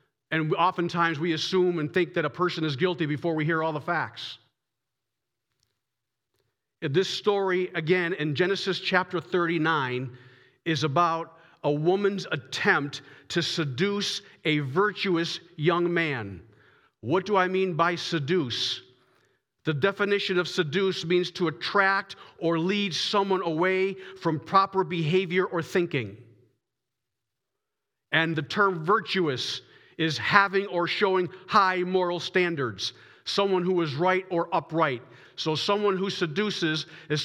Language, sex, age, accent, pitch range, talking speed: English, male, 50-69, American, 140-185 Hz, 125 wpm